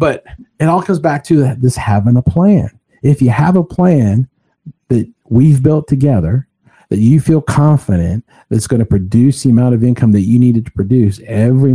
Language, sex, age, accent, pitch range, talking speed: English, male, 50-69, American, 105-135 Hz, 190 wpm